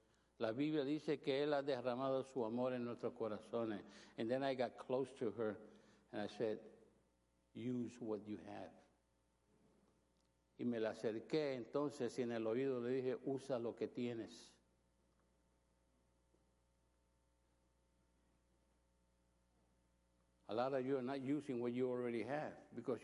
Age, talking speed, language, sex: 60-79, 140 wpm, English, male